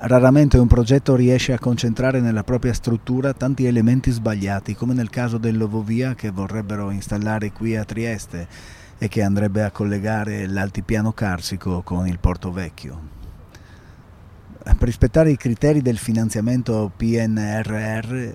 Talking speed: 130 wpm